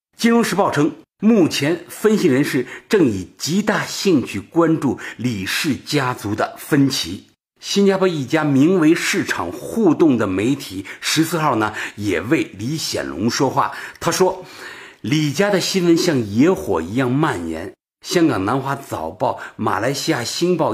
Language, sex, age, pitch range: Chinese, male, 50-69, 135-190 Hz